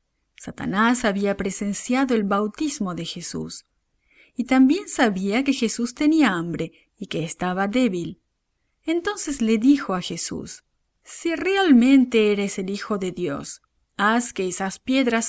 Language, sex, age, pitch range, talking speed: English, female, 40-59, 185-250 Hz, 135 wpm